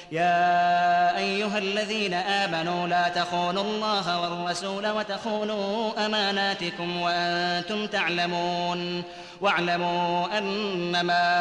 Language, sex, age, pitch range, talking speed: Arabic, male, 30-49, 175-215 Hz, 75 wpm